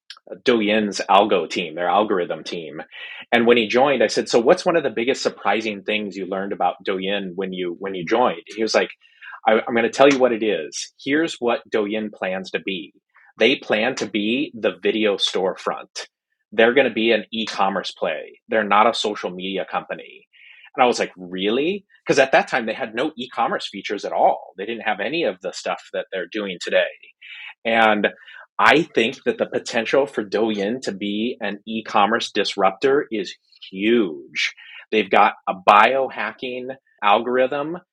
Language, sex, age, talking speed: English, male, 30-49, 180 wpm